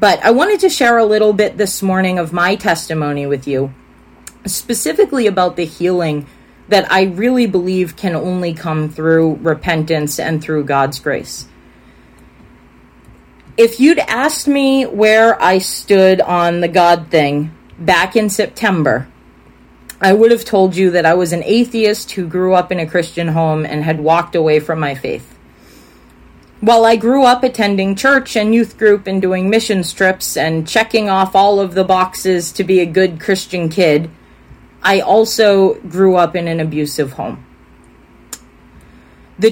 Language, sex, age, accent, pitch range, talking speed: English, female, 30-49, American, 165-205 Hz, 160 wpm